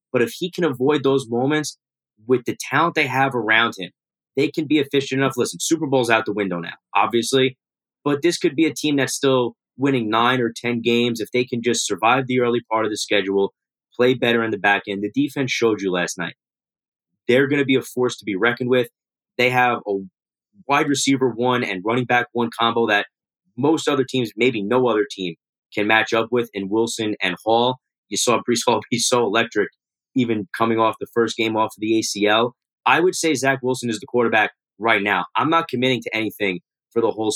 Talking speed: 215 wpm